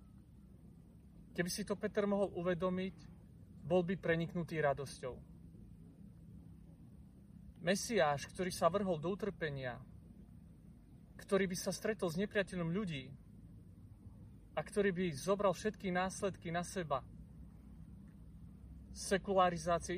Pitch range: 150-190 Hz